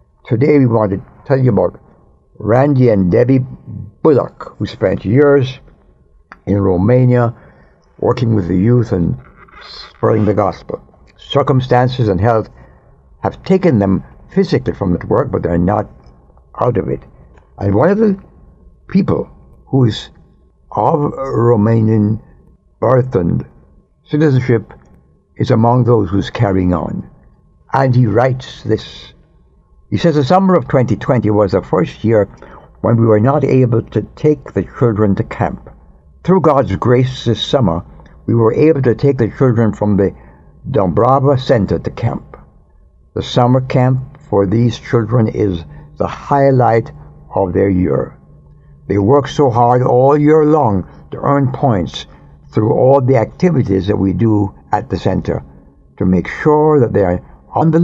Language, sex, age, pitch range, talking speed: English, male, 60-79, 95-135 Hz, 145 wpm